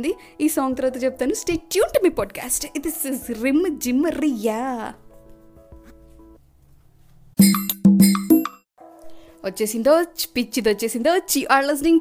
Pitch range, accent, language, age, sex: 230-335 Hz, native, Telugu, 20-39, female